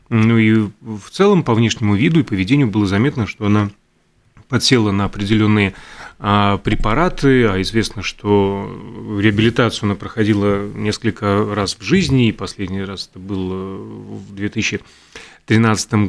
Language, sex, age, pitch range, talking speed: Russian, male, 30-49, 105-135 Hz, 125 wpm